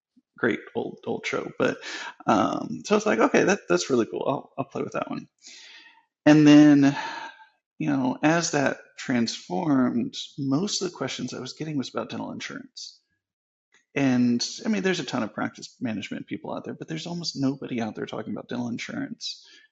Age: 30-49